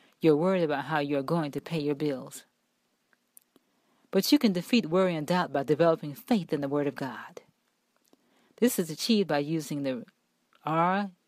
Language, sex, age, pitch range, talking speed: English, female, 40-59, 150-210 Hz, 180 wpm